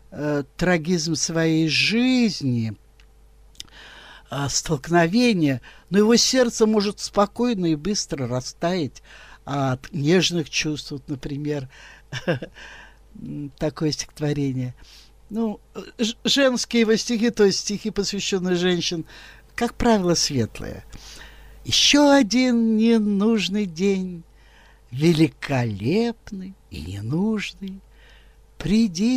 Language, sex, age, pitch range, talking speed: Russian, male, 50-69, 145-220 Hz, 80 wpm